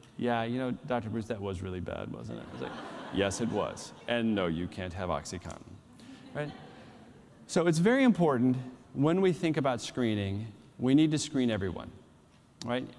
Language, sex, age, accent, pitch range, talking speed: English, male, 30-49, American, 100-130 Hz, 180 wpm